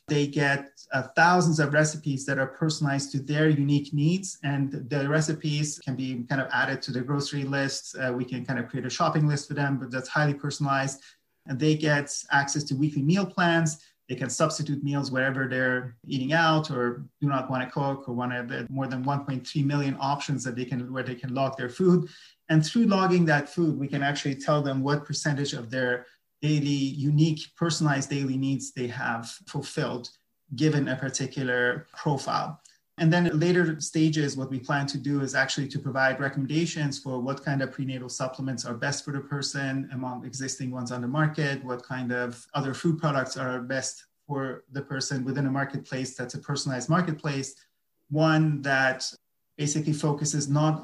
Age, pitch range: 30-49, 130-150 Hz